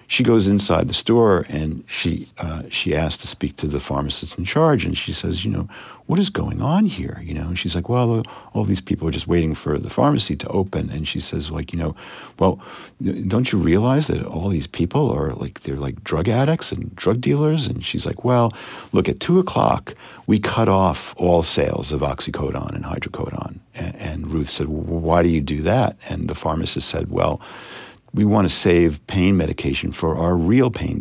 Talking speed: 210 wpm